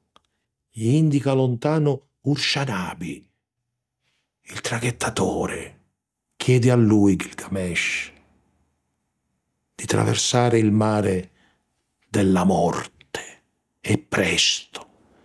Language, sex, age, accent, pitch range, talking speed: Italian, male, 60-79, native, 90-120 Hz, 70 wpm